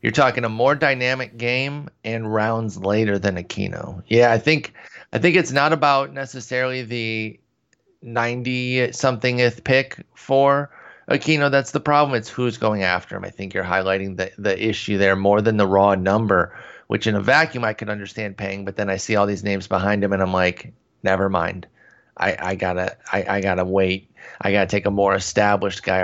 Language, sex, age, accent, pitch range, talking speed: English, male, 30-49, American, 100-120 Hz, 195 wpm